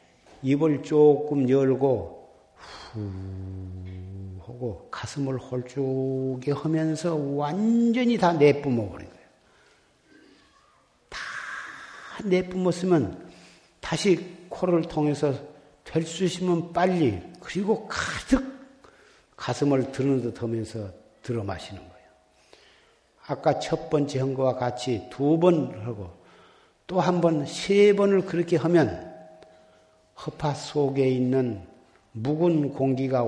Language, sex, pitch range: Korean, male, 110-160 Hz